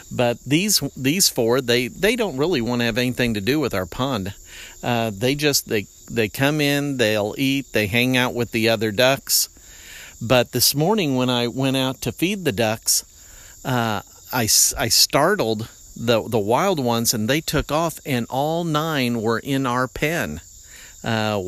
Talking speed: 180 wpm